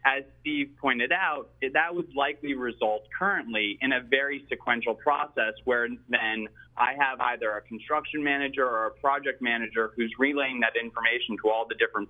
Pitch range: 115-150 Hz